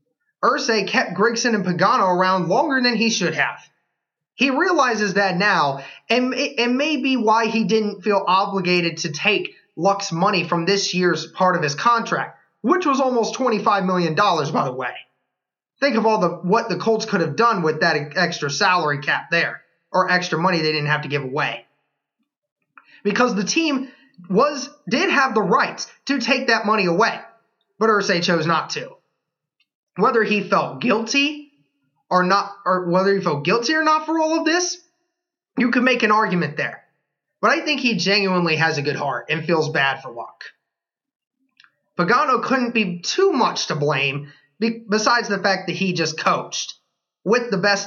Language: English